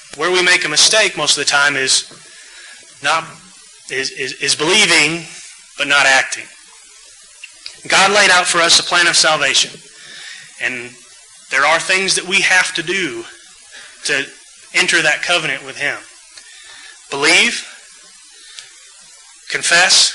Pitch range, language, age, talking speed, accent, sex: 145-185 Hz, English, 30-49, 130 wpm, American, male